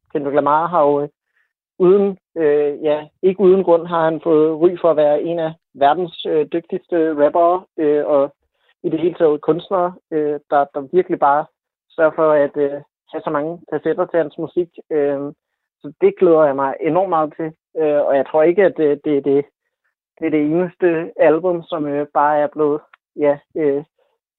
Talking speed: 190 wpm